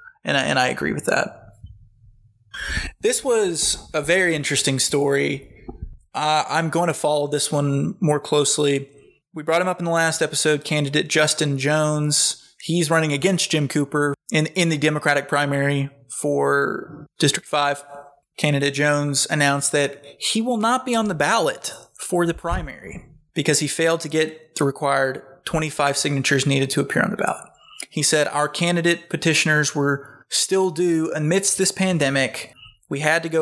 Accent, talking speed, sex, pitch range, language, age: American, 160 wpm, male, 140-165 Hz, English, 20-39